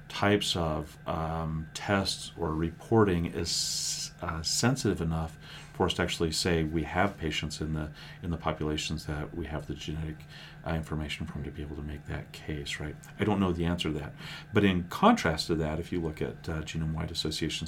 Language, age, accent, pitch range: English, 40-59, American, 80-100 Hz